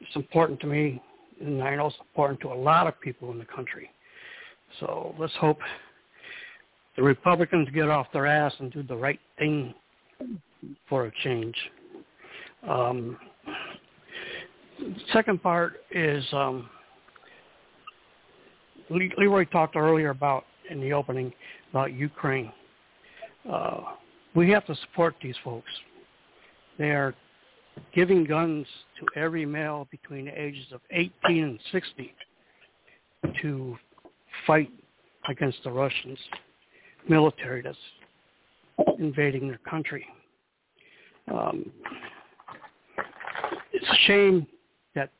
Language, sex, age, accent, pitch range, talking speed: English, male, 60-79, American, 135-175 Hz, 115 wpm